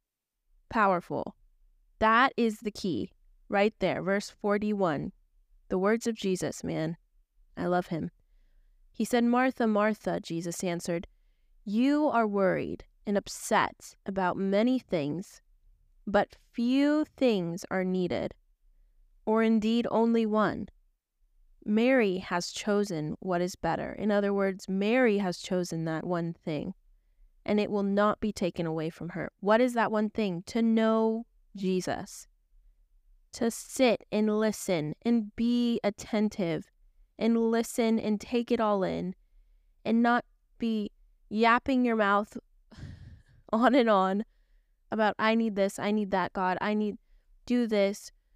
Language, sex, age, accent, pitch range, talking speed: English, female, 20-39, American, 185-225 Hz, 135 wpm